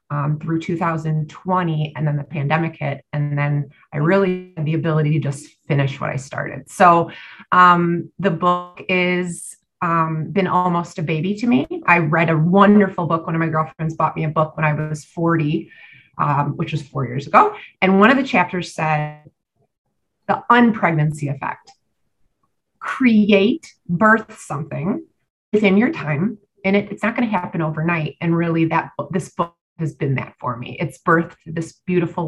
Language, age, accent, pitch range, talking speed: English, 30-49, American, 155-185 Hz, 175 wpm